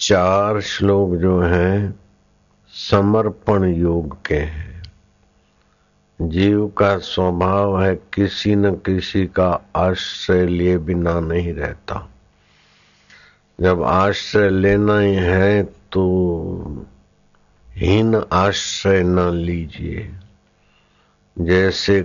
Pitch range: 90-100 Hz